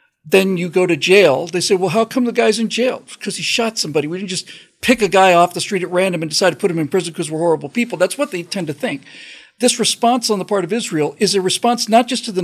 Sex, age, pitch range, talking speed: male, 50-69, 180-235 Hz, 290 wpm